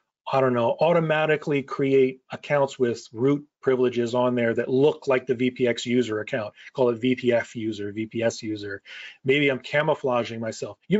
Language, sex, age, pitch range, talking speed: English, male, 30-49, 120-150 Hz, 160 wpm